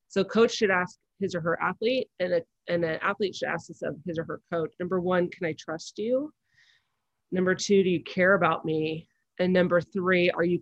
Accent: American